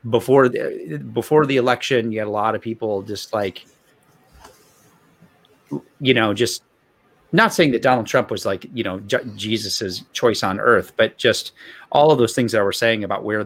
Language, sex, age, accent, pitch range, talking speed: English, male, 30-49, American, 105-135 Hz, 175 wpm